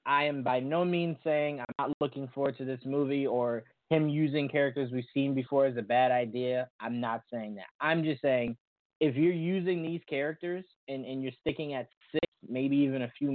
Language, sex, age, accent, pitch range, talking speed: English, male, 20-39, American, 125-150 Hz, 205 wpm